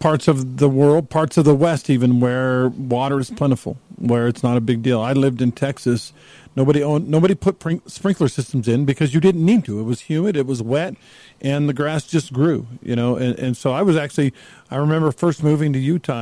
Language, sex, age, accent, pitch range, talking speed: English, male, 50-69, American, 120-150 Hz, 230 wpm